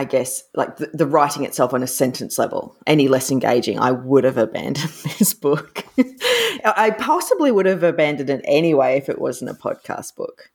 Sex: female